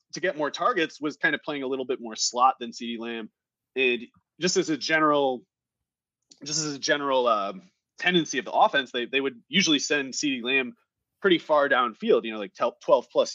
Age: 30-49